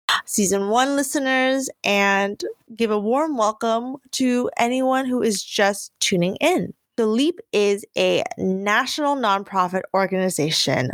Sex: female